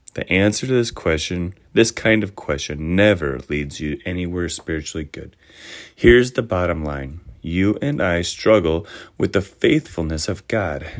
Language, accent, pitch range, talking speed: English, American, 80-100 Hz, 155 wpm